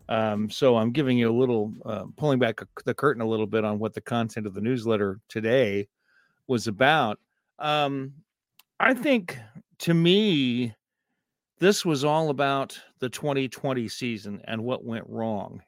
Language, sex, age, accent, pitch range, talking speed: English, male, 50-69, American, 115-155 Hz, 155 wpm